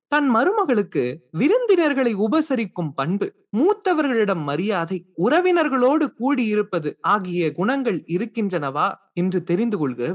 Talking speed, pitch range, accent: 90 wpm, 150-230 Hz, native